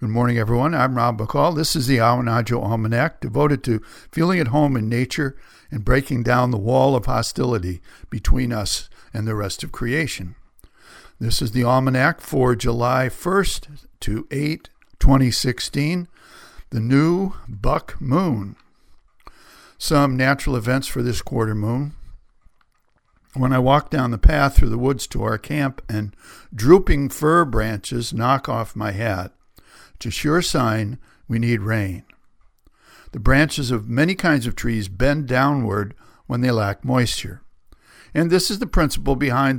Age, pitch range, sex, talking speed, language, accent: 60-79, 115-140 Hz, male, 150 wpm, English, American